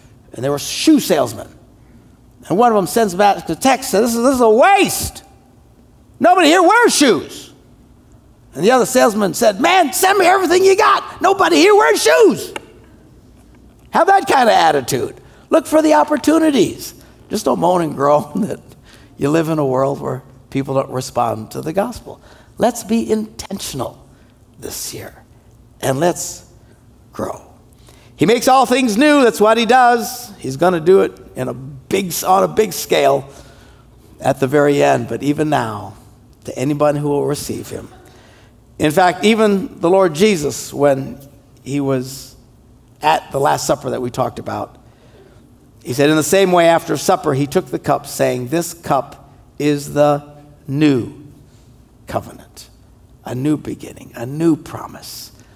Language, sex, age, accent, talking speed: English, male, 60-79, American, 160 wpm